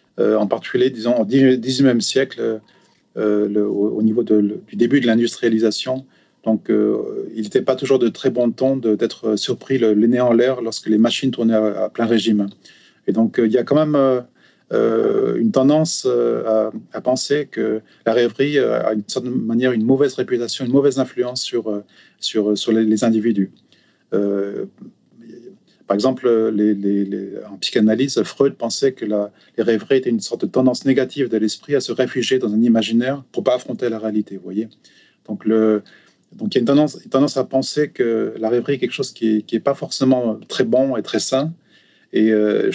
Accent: French